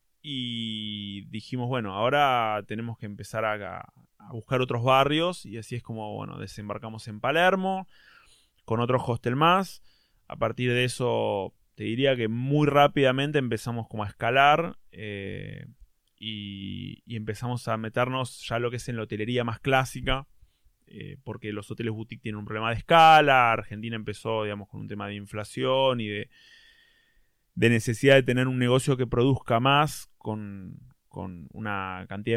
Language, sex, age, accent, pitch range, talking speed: Spanish, male, 20-39, Argentinian, 110-135 Hz, 160 wpm